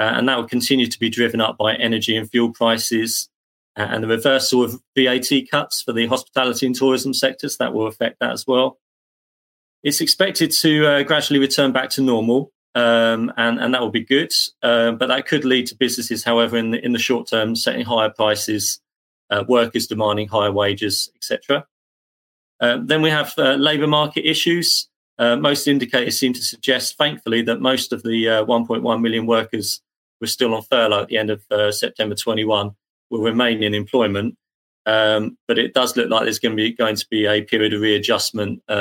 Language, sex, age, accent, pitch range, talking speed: English, male, 30-49, British, 110-130 Hz, 195 wpm